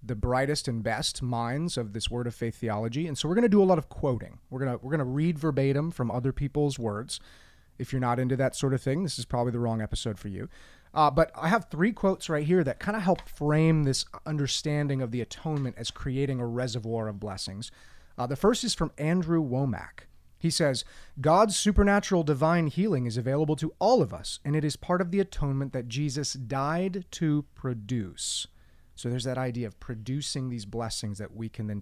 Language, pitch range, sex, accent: English, 115-160 Hz, male, American